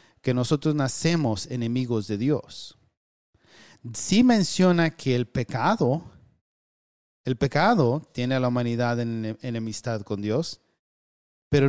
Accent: Mexican